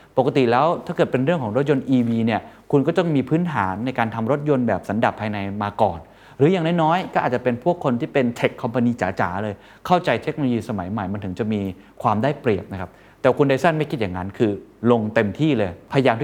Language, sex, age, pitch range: Thai, male, 20-39, 105-150 Hz